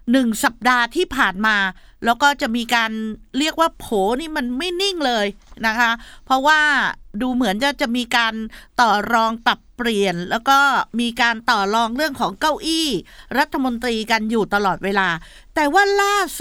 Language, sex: Thai, female